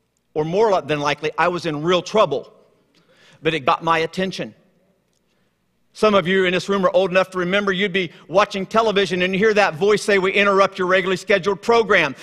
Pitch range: 185-235 Hz